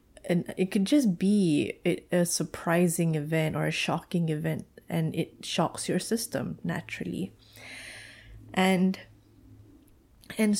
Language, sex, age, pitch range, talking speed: English, female, 20-39, 155-195 Hz, 115 wpm